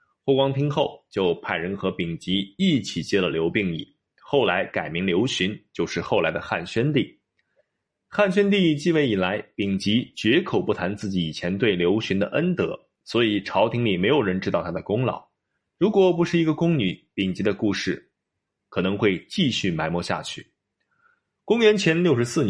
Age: 20-39